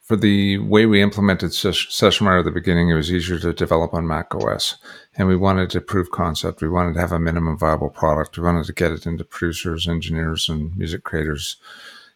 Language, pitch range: English, 85-95 Hz